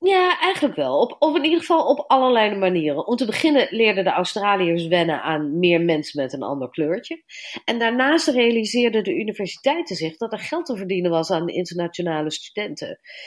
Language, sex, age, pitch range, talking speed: Dutch, female, 40-59, 175-240 Hz, 175 wpm